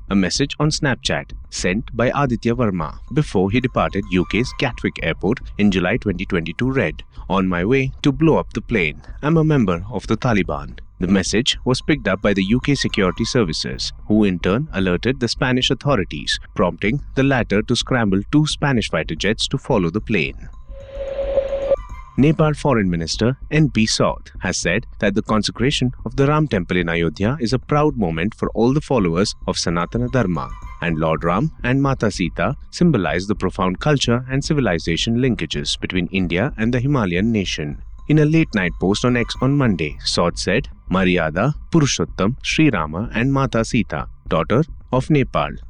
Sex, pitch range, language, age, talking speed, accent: male, 95-135 Hz, English, 30-49, 170 wpm, Indian